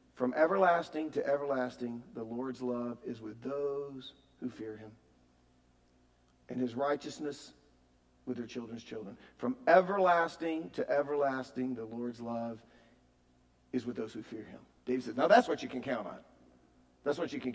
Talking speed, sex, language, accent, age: 155 wpm, male, English, American, 50-69